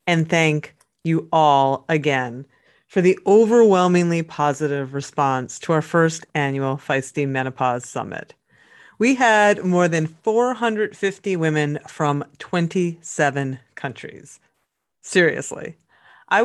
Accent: American